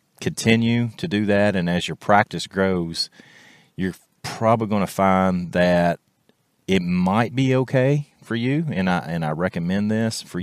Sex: male